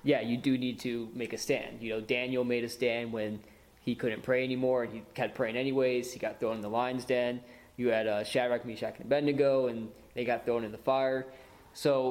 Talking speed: 230 wpm